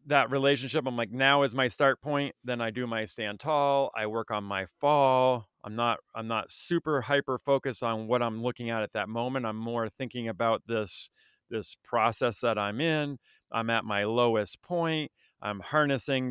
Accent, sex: American, male